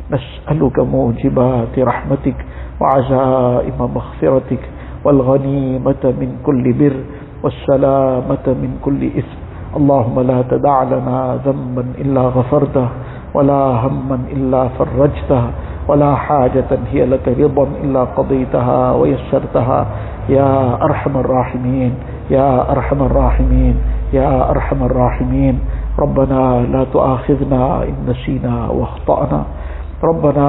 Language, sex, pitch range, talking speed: English, male, 125-140 Hz, 95 wpm